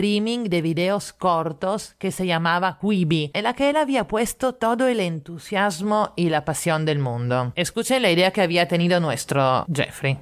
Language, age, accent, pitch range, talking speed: Spanish, 30-49, Italian, 160-215 Hz, 170 wpm